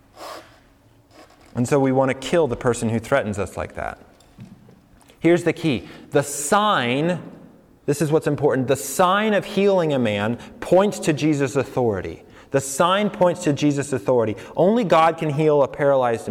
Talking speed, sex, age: 160 wpm, male, 30-49